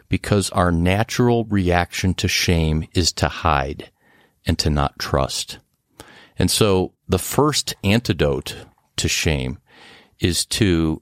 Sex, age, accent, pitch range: male, 50-69, American, 80-100 Hz